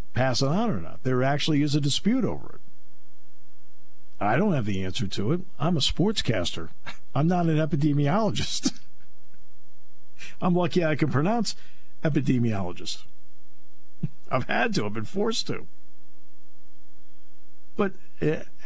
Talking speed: 130 wpm